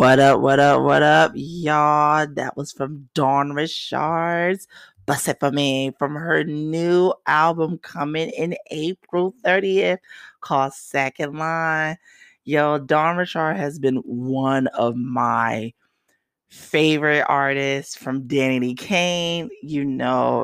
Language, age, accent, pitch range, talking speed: English, 30-49, American, 140-185 Hz, 125 wpm